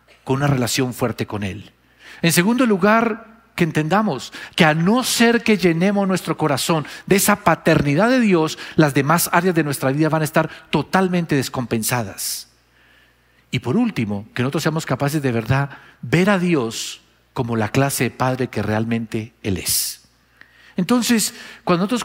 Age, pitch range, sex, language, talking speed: 50-69, 135-190 Hz, male, Spanish, 160 wpm